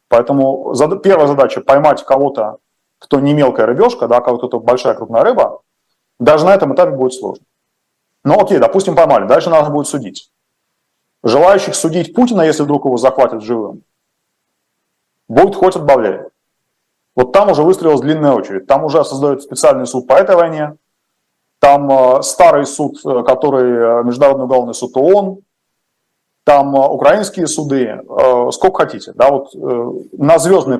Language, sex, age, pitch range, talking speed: Russian, male, 30-49, 125-165 Hz, 135 wpm